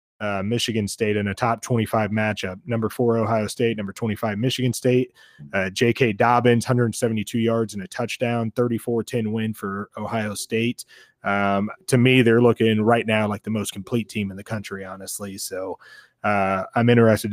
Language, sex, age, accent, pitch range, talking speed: English, male, 20-39, American, 105-125 Hz, 175 wpm